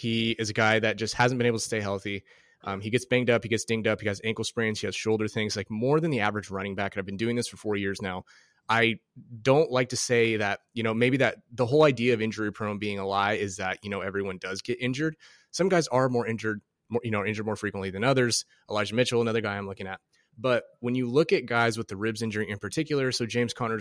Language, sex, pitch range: English, male, 105-120 Hz